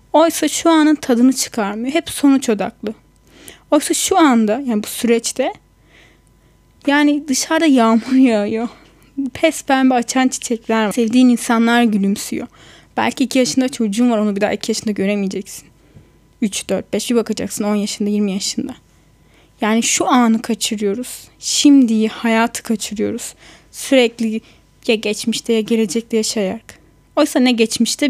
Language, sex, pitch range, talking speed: Turkish, female, 220-275 Hz, 130 wpm